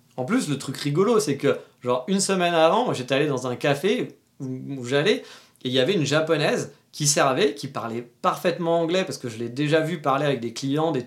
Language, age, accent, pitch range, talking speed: French, 40-59, French, 135-165 Hz, 230 wpm